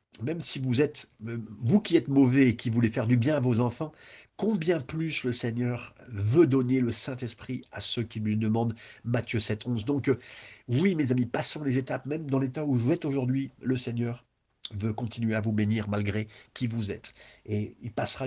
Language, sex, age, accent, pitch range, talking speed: French, male, 50-69, French, 110-140 Hz, 200 wpm